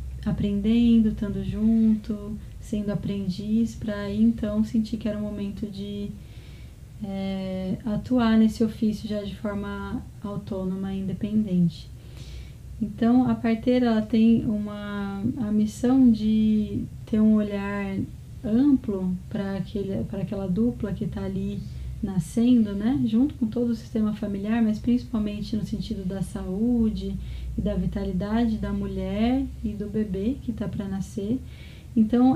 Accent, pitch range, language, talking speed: Brazilian, 200-230 Hz, Portuguese, 125 wpm